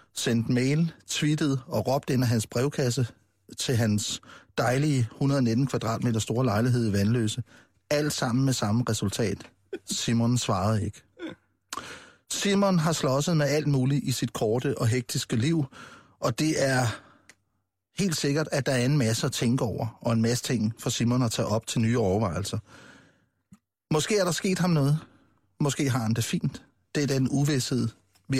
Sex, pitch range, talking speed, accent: male, 115-145 Hz, 165 wpm, native